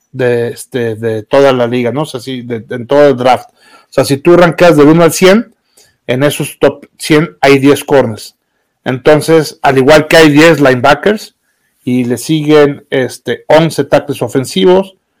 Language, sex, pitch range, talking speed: Spanish, male, 130-160 Hz, 180 wpm